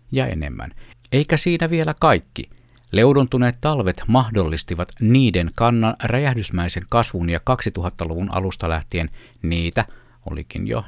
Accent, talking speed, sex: native, 110 wpm, male